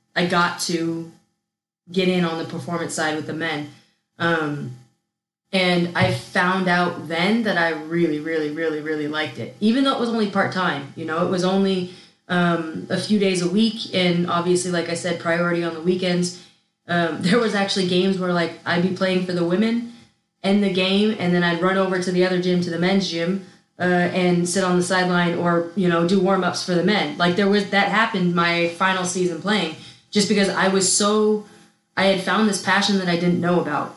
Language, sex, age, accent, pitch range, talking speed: German, female, 20-39, American, 170-195 Hz, 215 wpm